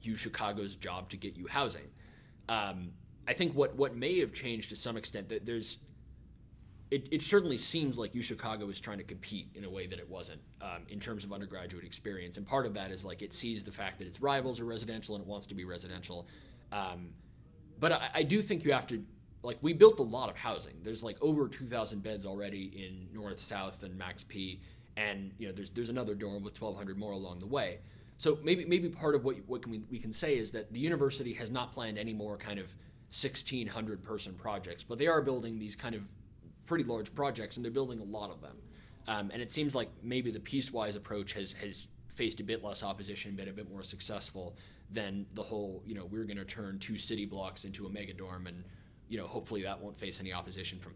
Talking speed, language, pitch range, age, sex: 230 wpm, English, 100-120 Hz, 20-39, male